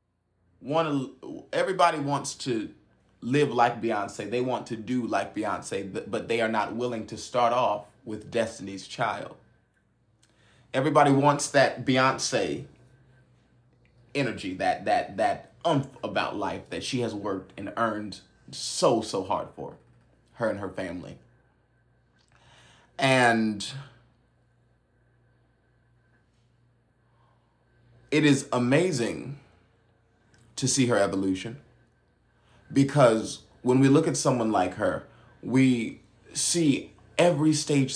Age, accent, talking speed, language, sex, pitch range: 30-49, American, 110 wpm, English, male, 105-135 Hz